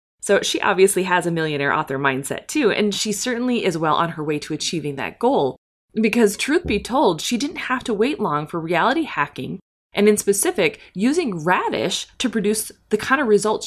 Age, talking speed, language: 20-39, 200 wpm, English